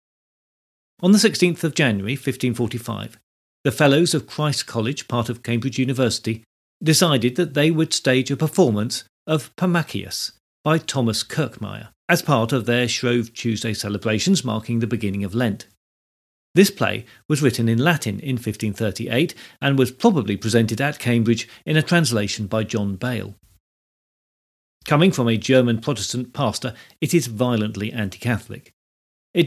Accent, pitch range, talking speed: British, 110-140 Hz, 145 wpm